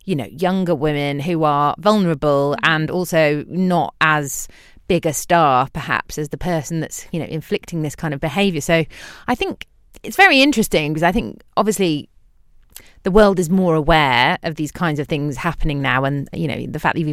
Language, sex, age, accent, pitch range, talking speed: English, female, 30-49, British, 150-180 Hz, 195 wpm